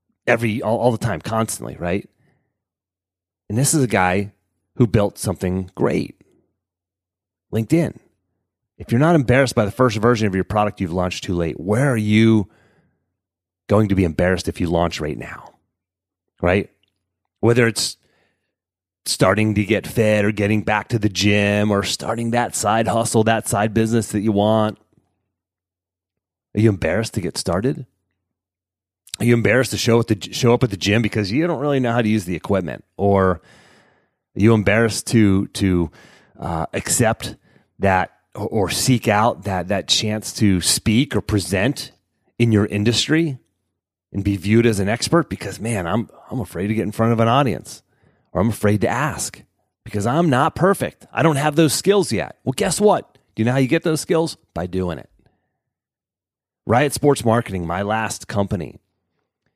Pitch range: 95-115 Hz